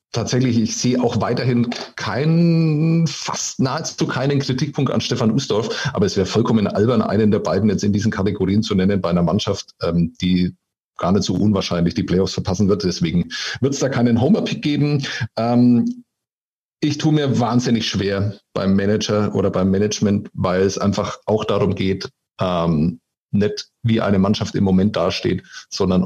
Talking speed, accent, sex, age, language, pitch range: 160 wpm, German, male, 40-59, German, 100-125 Hz